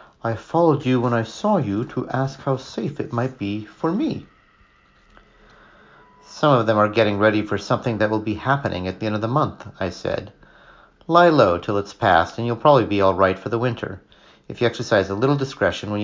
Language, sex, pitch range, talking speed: English, male, 100-135 Hz, 215 wpm